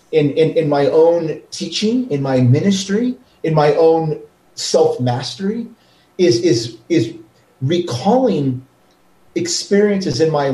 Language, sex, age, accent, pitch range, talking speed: English, male, 40-59, American, 140-190 Hz, 115 wpm